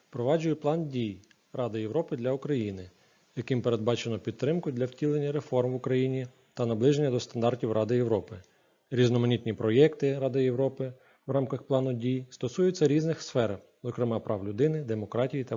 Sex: male